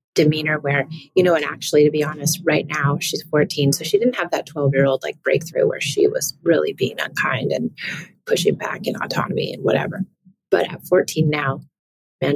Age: 30-49